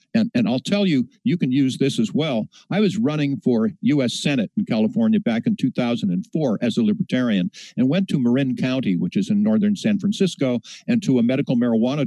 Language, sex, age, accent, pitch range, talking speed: English, male, 60-79, American, 140-220 Hz, 205 wpm